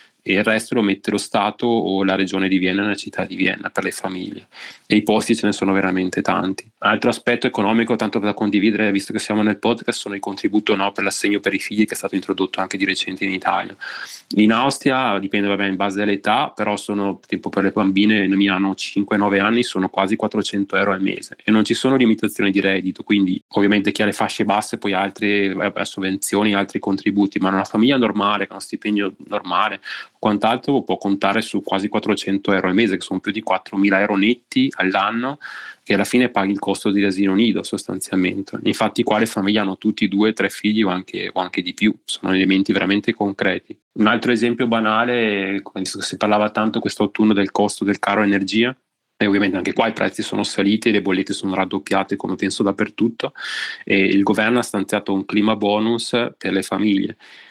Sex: male